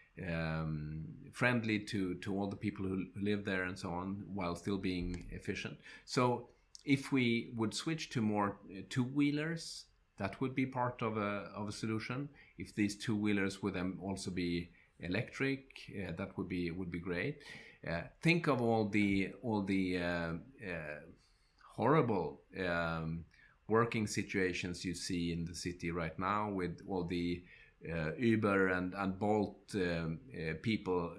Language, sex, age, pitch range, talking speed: English, male, 30-49, 90-110 Hz, 155 wpm